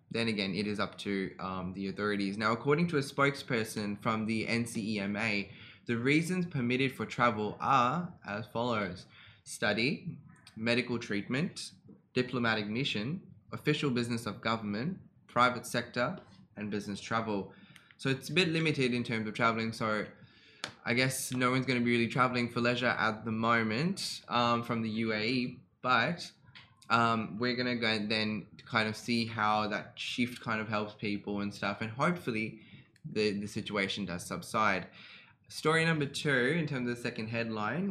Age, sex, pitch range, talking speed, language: 10-29, male, 105-125 Hz, 160 wpm, Arabic